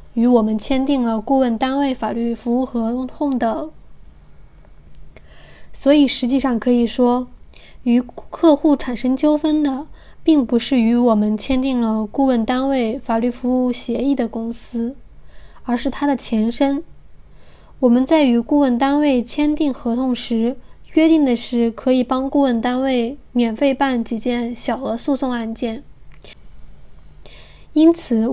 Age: 10-29